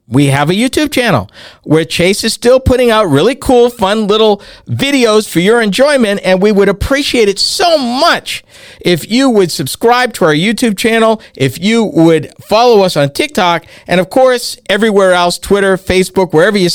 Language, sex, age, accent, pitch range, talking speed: English, male, 50-69, American, 155-225 Hz, 180 wpm